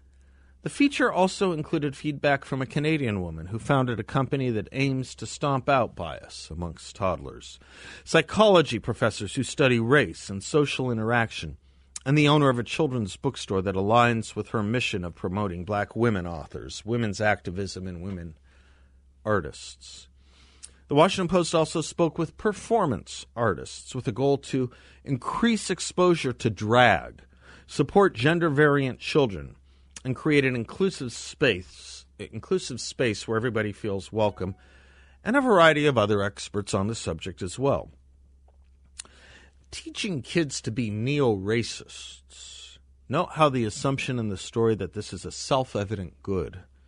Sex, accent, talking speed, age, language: male, American, 140 wpm, 50-69, English